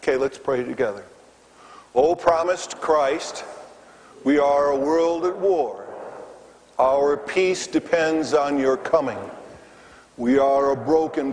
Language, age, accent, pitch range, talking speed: English, 50-69, American, 135-170 Hz, 120 wpm